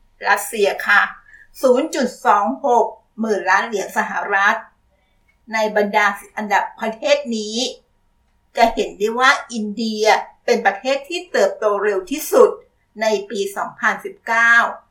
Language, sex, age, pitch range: Thai, female, 60-79, 205-260 Hz